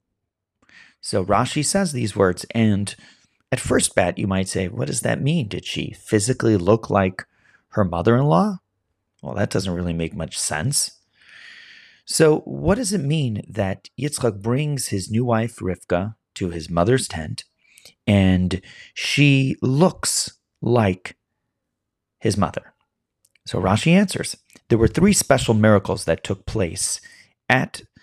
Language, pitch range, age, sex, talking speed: English, 95-130 Hz, 30-49, male, 135 wpm